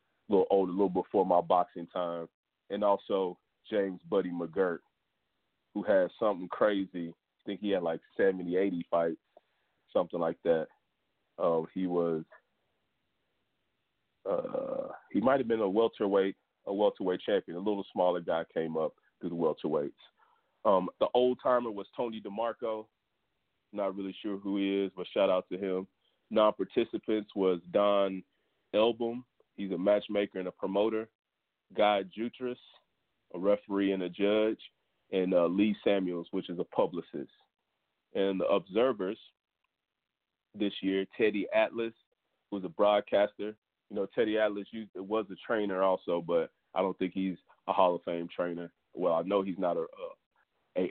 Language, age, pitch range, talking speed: English, 30-49, 85-105 Hz, 150 wpm